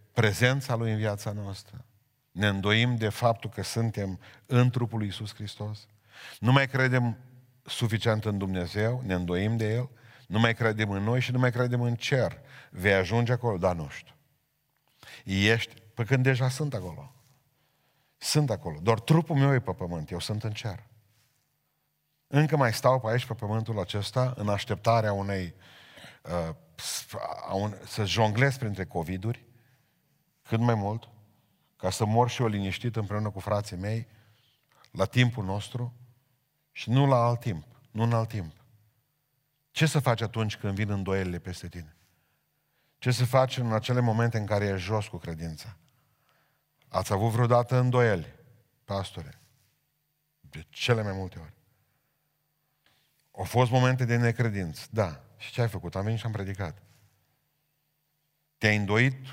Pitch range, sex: 105-130 Hz, male